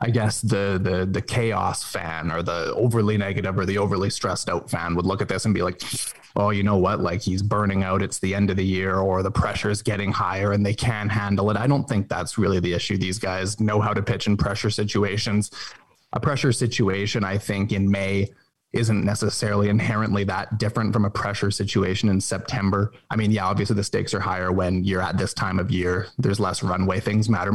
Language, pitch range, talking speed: English, 100-115 Hz, 220 wpm